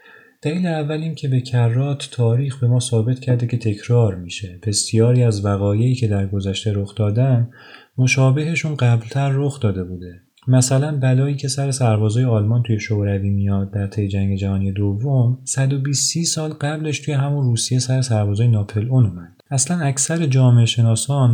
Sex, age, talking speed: male, 30-49, 150 wpm